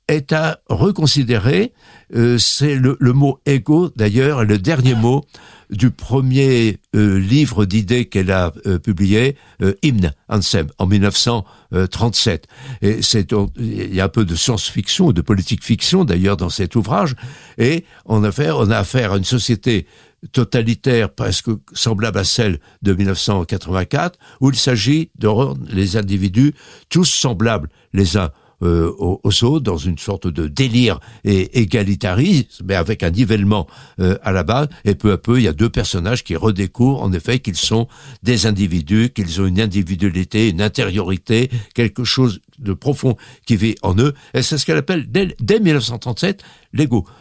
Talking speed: 160 wpm